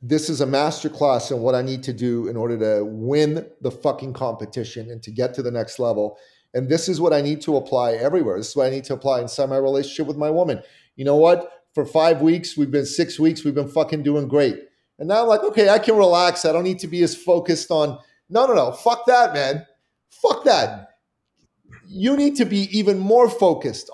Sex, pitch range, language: male, 135-170 Hz, English